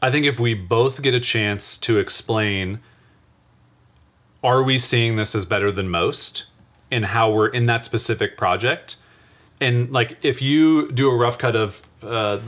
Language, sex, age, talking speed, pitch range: English, male, 30-49, 170 wpm, 105-130 Hz